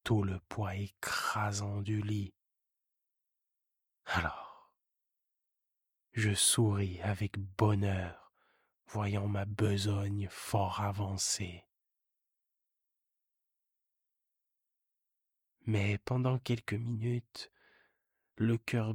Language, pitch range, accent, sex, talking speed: French, 100-105 Hz, French, male, 70 wpm